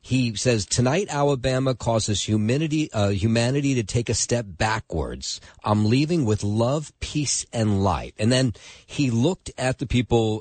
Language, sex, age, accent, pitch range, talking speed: English, male, 40-59, American, 90-120 Hz, 155 wpm